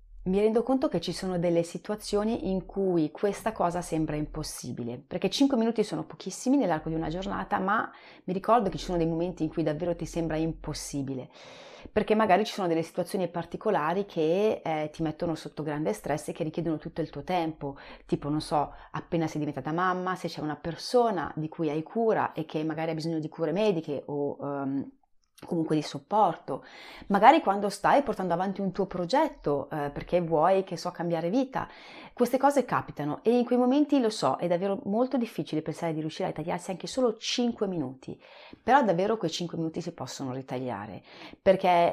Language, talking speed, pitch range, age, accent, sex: Italian, 190 wpm, 155-195 Hz, 30-49, native, female